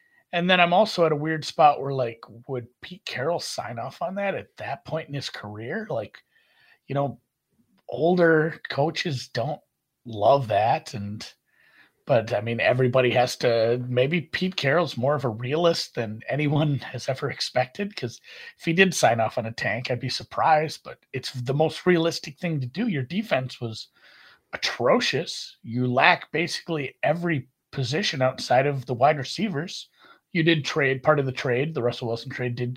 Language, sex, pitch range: English, male, 125-170 Hz